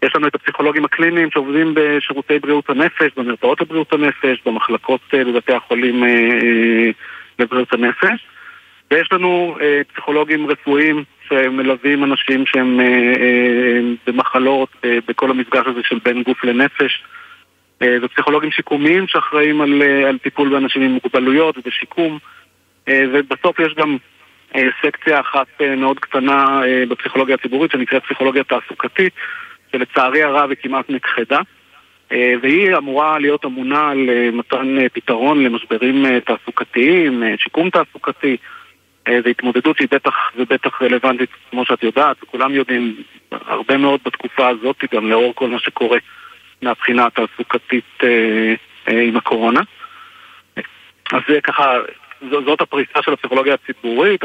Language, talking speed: Hebrew, 110 wpm